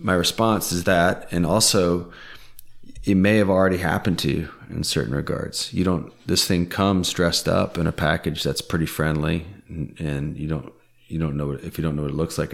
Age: 30-49